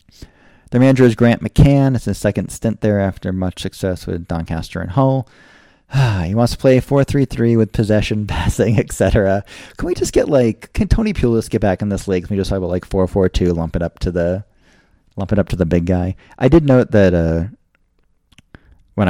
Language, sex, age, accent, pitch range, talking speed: English, male, 30-49, American, 85-105 Hz, 190 wpm